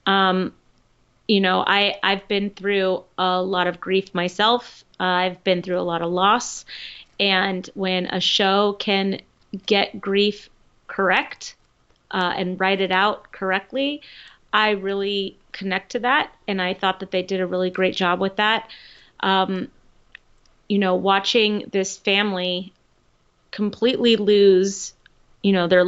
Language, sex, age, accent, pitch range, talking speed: English, female, 30-49, American, 180-205 Hz, 145 wpm